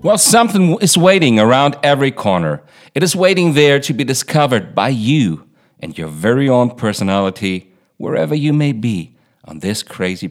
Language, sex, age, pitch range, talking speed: English, male, 50-69, 95-150 Hz, 165 wpm